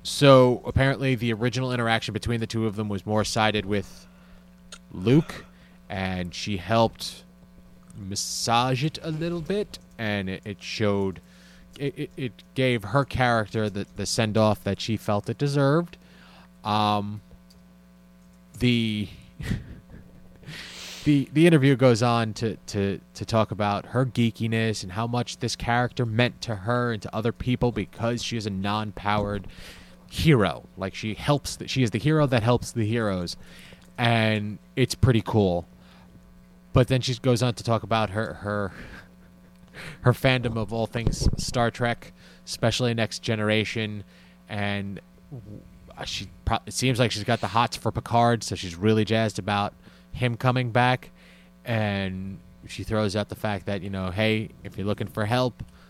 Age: 20-39